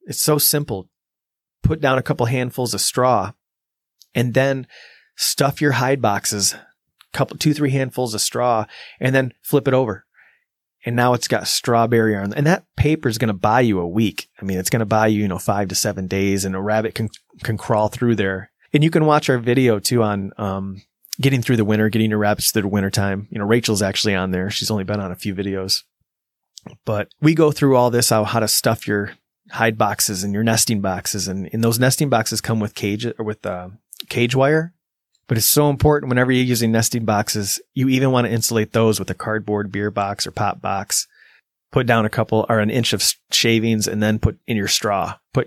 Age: 30-49